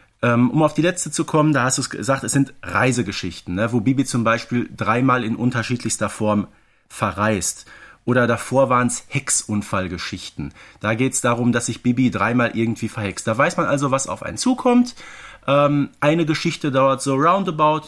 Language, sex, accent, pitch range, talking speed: German, male, German, 115-150 Hz, 175 wpm